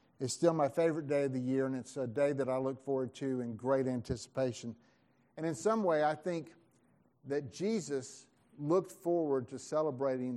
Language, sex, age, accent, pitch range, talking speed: English, male, 50-69, American, 130-165 Hz, 185 wpm